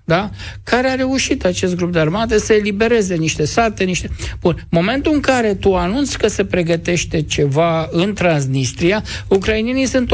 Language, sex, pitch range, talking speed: Romanian, male, 160-210 Hz, 160 wpm